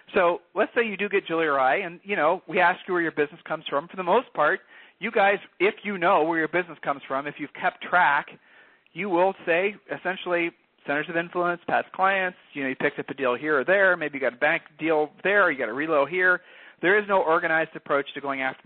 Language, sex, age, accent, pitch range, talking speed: English, male, 50-69, American, 150-200 Hz, 245 wpm